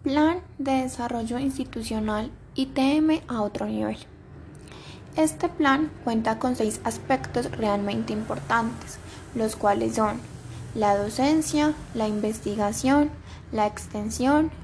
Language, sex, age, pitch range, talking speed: Spanish, female, 10-29, 210-265 Hz, 105 wpm